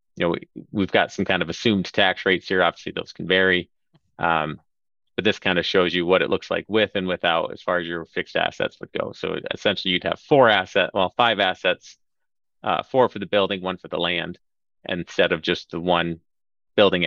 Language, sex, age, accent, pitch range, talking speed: English, male, 30-49, American, 85-100 Hz, 215 wpm